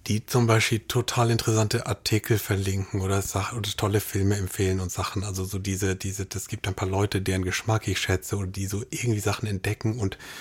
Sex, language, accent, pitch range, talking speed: male, German, German, 100-115 Hz, 200 wpm